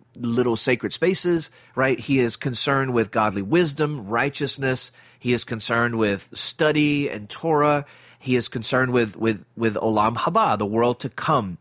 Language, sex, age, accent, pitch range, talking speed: English, male, 30-49, American, 120-145 Hz, 155 wpm